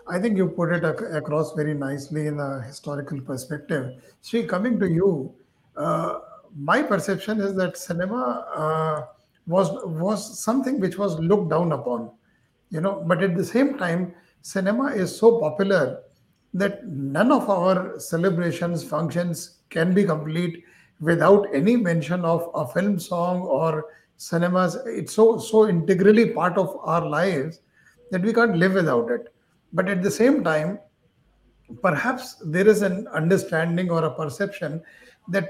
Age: 60-79